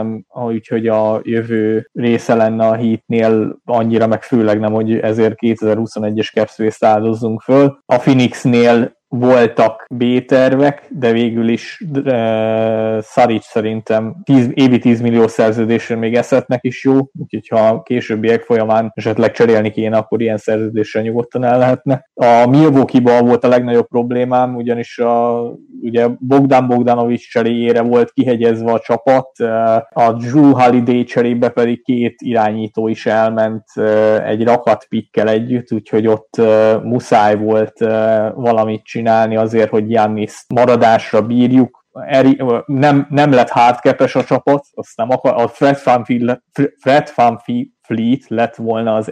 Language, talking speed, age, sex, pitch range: Hungarian, 130 wpm, 20-39, male, 110-125 Hz